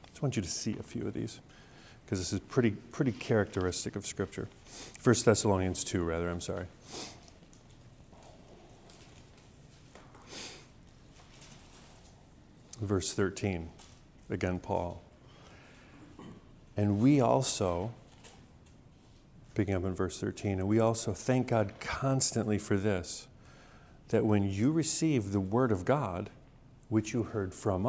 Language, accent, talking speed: English, American, 120 wpm